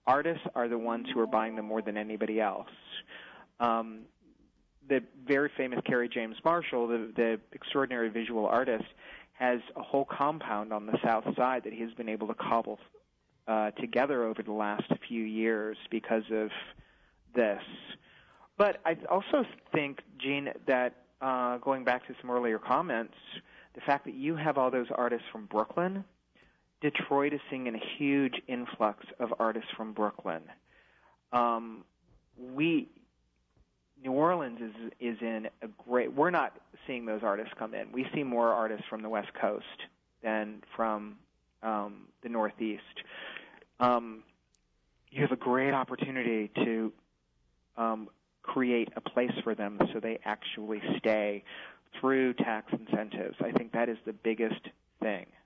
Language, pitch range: English, 110-130 Hz